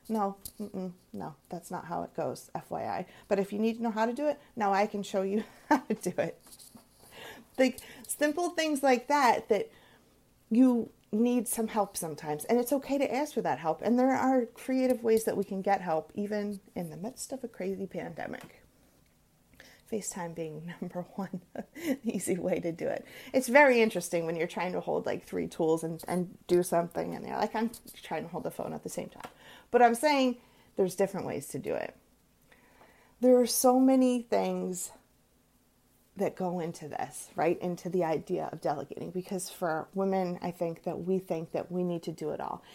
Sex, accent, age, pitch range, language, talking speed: female, American, 30-49, 180-235 Hz, English, 200 wpm